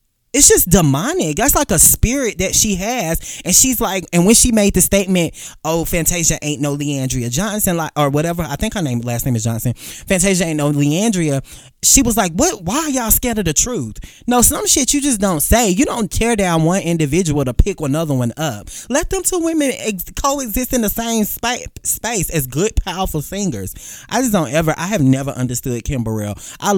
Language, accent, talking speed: English, American, 215 wpm